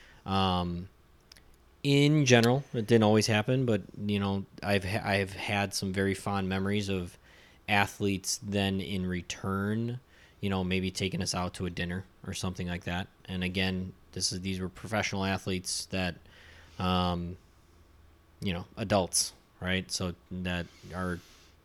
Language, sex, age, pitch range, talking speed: English, male, 20-39, 90-100 Hz, 145 wpm